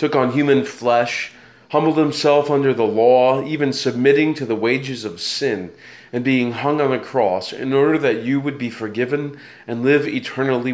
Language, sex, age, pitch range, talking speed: English, male, 30-49, 115-140 Hz, 180 wpm